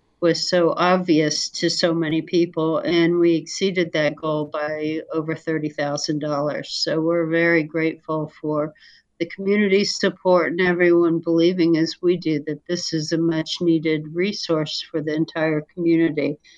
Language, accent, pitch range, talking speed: English, American, 160-185 Hz, 145 wpm